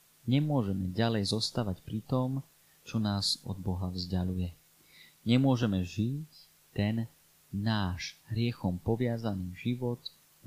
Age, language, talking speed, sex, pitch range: 30-49, Slovak, 105 wpm, male, 95-120 Hz